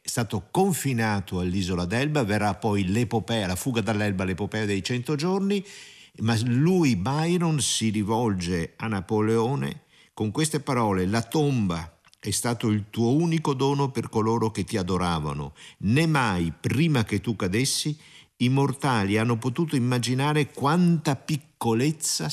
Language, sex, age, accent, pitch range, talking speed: Italian, male, 50-69, native, 95-130 Hz, 135 wpm